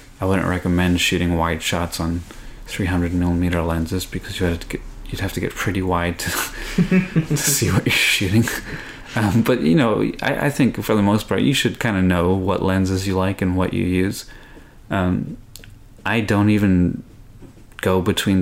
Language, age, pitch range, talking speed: English, 30-49, 90-100 Hz, 170 wpm